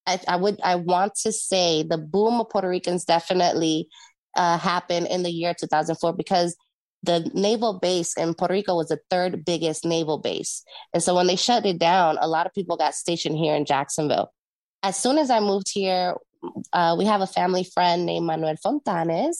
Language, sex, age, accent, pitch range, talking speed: English, female, 20-39, American, 160-195 Hz, 195 wpm